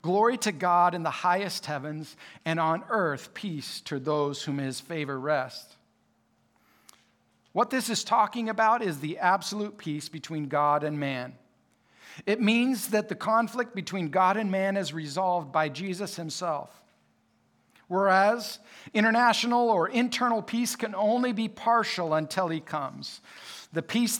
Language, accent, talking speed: English, American, 145 wpm